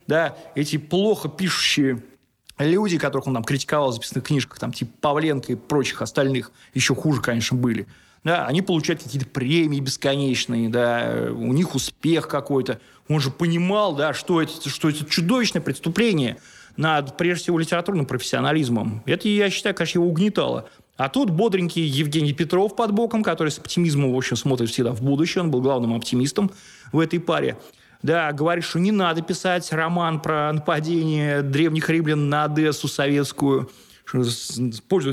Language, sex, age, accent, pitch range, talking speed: Russian, male, 20-39, native, 135-175 Hz, 155 wpm